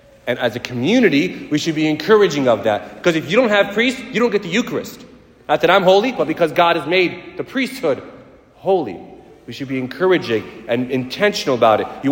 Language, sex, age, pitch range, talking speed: English, male, 30-49, 155-210 Hz, 210 wpm